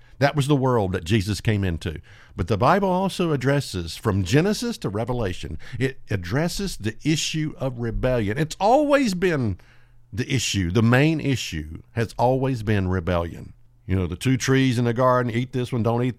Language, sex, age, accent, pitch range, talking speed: English, male, 50-69, American, 110-150 Hz, 180 wpm